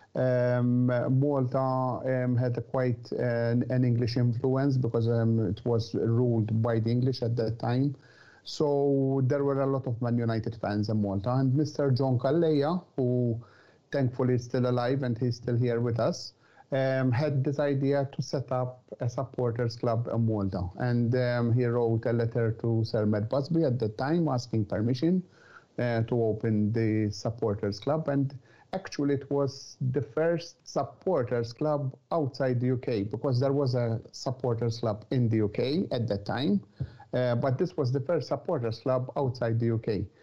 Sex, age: male, 50-69